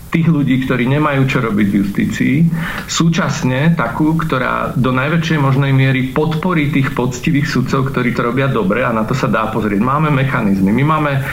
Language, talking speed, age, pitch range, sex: Slovak, 175 wpm, 40-59, 130-160 Hz, male